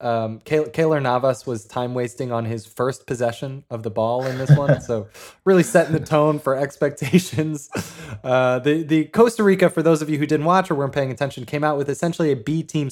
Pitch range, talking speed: 110-145 Hz, 210 wpm